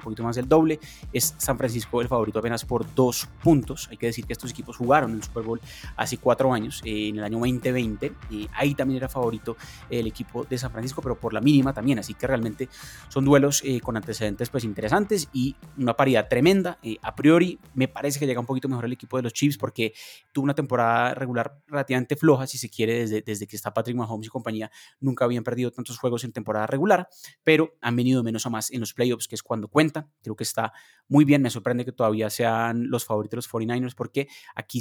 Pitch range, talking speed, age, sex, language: 110-130 Hz, 225 wpm, 20-39, male, Spanish